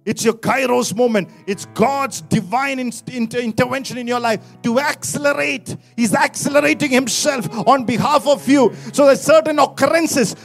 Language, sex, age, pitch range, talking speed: English, male, 50-69, 255-310 Hz, 150 wpm